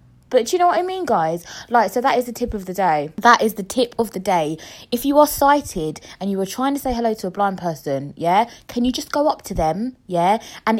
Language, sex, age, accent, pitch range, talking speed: English, female, 20-39, British, 185-290 Hz, 270 wpm